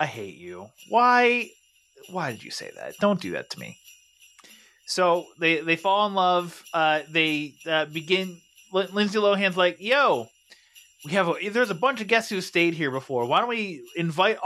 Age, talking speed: 30-49, 185 wpm